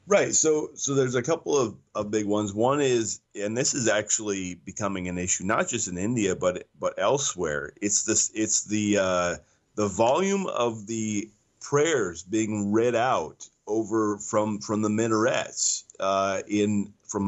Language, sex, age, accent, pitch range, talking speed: English, male, 30-49, American, 100-120 Hz, 165 wpm